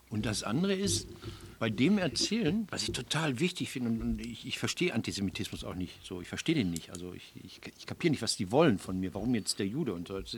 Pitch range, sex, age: 105-140 Hz, male, 60-79